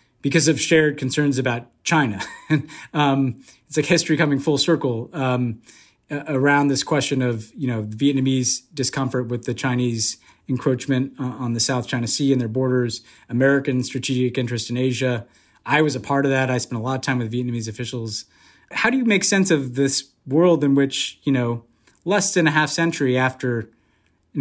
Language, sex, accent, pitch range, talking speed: English, male, American, 125-150 Hz, 180 wpm